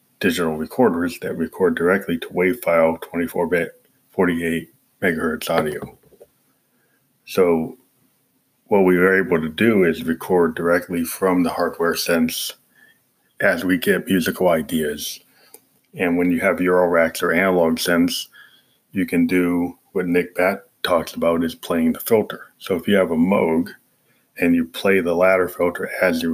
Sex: male